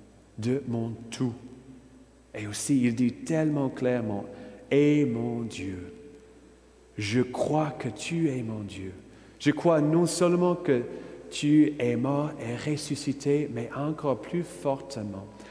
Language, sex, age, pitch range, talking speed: French, male, 40-59, 110-140 Hz, 130 wpm